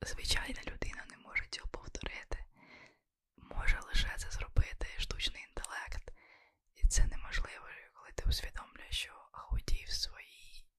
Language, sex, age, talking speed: Ukrainian, female, 20-39, 120 wpm